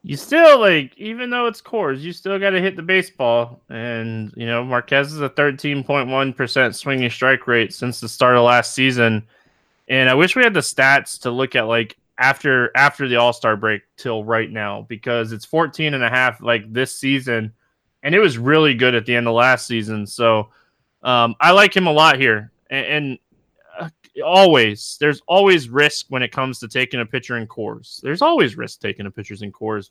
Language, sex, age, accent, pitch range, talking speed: English, male, 20-39, American, 120-165 Hz, 200 wpm